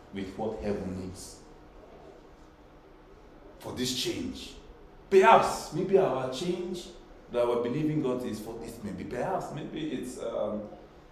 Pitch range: 115-165 Hz